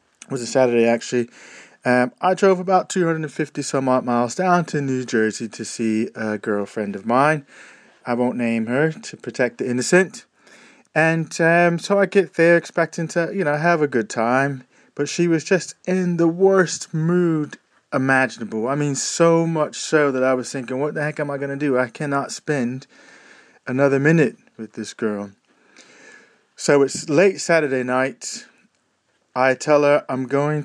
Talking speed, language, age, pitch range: 170 wpm, English, 30-49, 120-155 Hz